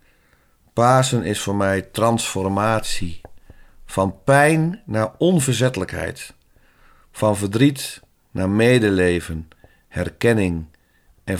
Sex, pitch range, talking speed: male, 95-125 Hz, 80 wpm